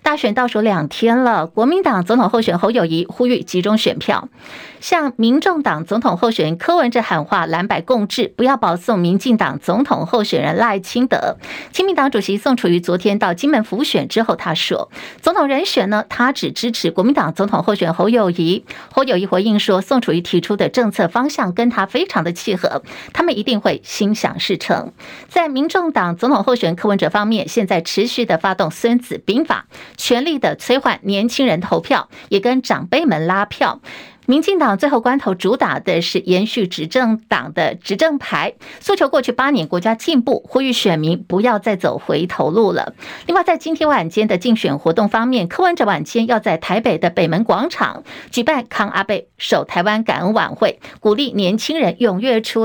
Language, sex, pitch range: Chinese, female, 190-255 Hz